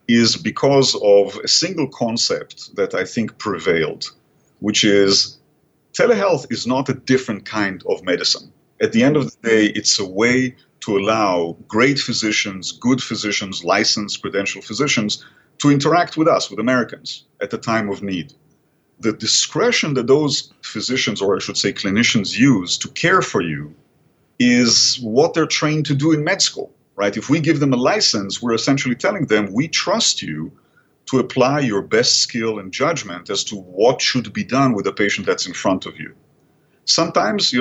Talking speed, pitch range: 175 wpm, 105-140 Hz